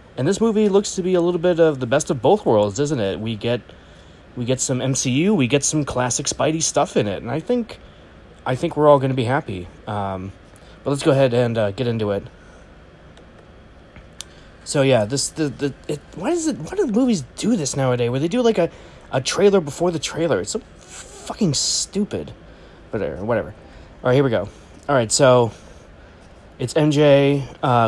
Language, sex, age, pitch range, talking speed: English, male, 30-49, 110-160 Hz, 210 wpm